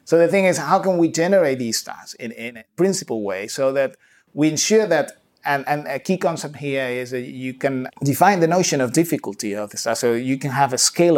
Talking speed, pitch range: 235 wpm, 115-150 Hz